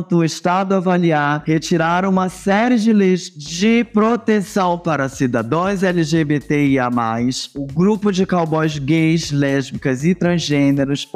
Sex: male